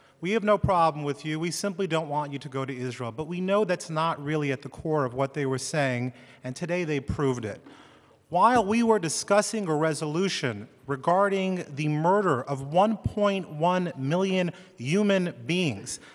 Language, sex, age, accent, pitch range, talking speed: English, male, 30-49, American, 170-230 Hz, 180 wpm